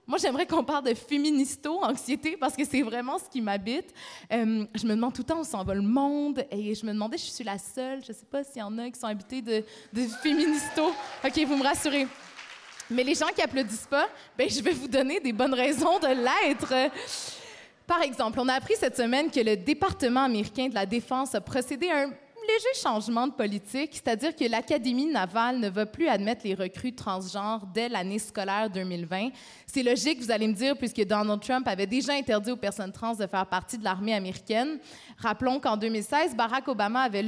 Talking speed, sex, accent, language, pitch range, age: 210 wpm, female, Canadian, French, 215-280 Hz, 20-39